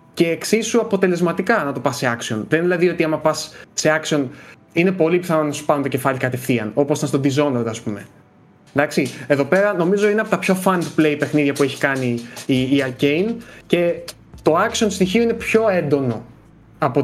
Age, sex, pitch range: 20-39, male, 130-170 Hz